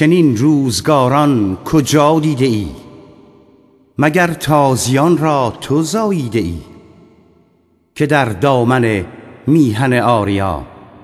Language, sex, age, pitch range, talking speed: Persian, male, 50-69, 95-145 Hz, 80 wpm